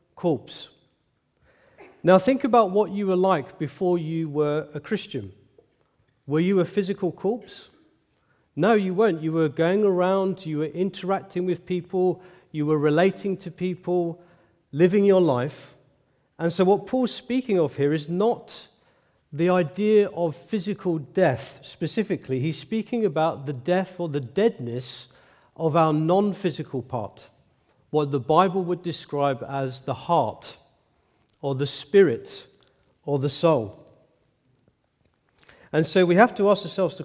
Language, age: English, 40-59